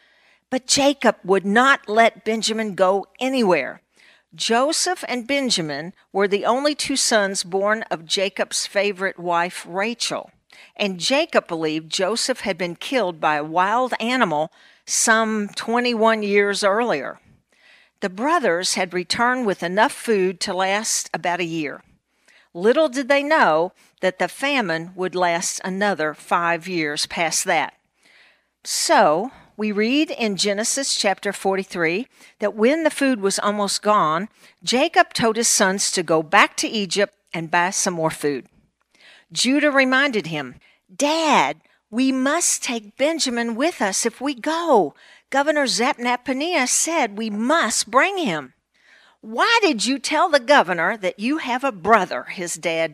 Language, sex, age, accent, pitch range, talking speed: English, female, 50-69, American, 185-270 Hz, 140 wpm